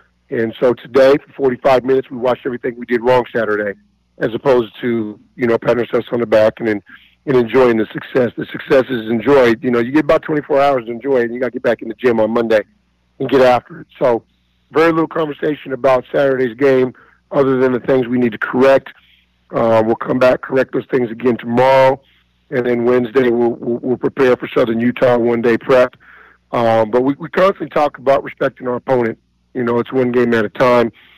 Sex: male